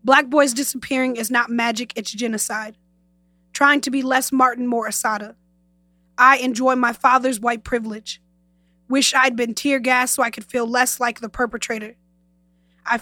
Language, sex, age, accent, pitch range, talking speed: English, female, 20-39, American, 180-255 Hz, 160 wpm